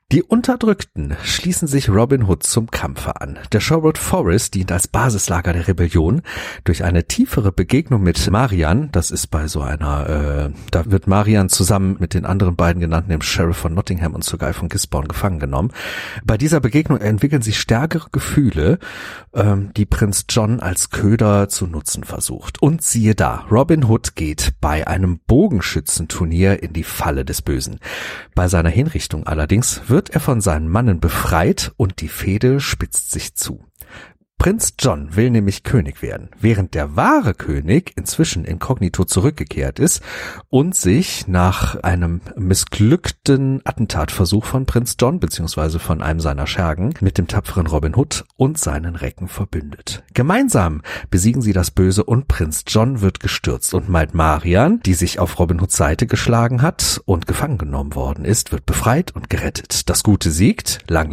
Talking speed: 165 wpm